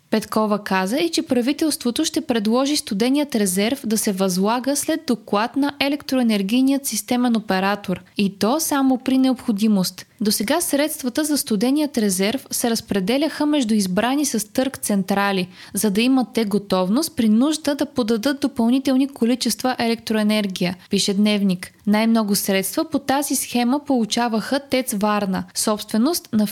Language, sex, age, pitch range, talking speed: Bulgarian, female, 20-39, 210-275 Hz, 135 wpm